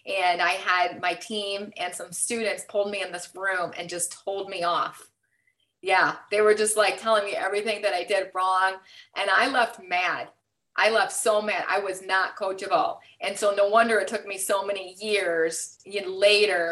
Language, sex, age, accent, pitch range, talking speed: English, female, 30-49, American, 180-215 Hz, 190 wpm